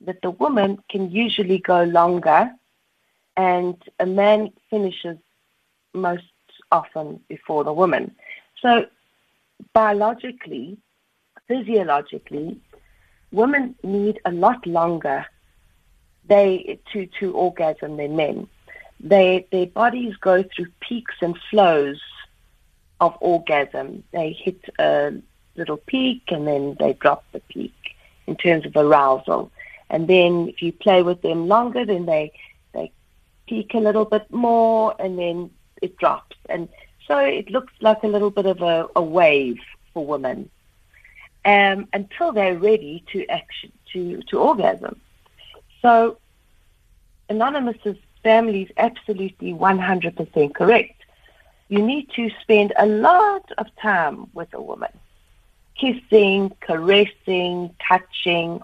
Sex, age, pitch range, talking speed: female, 40-59, 165-215 Hz, 125 wpm